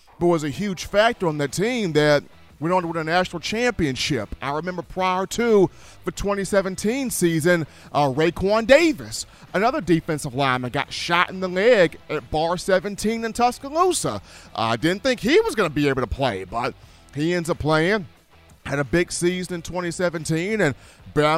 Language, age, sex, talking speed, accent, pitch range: English, 40-59, male, 170 wpm, American, 160-195 Hz